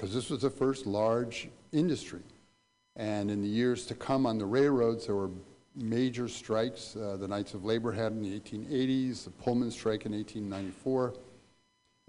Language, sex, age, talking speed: English, male, 50-69, 170 wpm